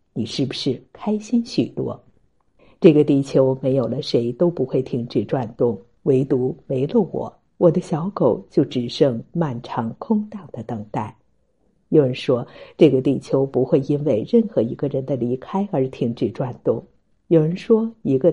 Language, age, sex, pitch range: Chinese, 50-69, female, 125-180 Hz